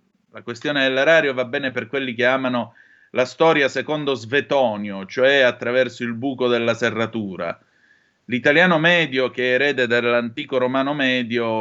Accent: native